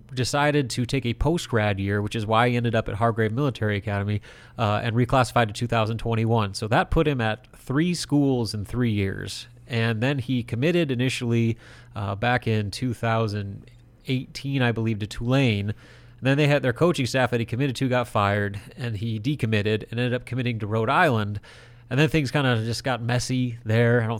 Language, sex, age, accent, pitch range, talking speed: English, male, 30-49, American, 115-130 Hz, 195 wpm